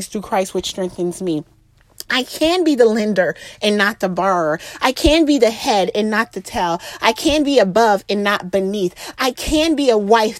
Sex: female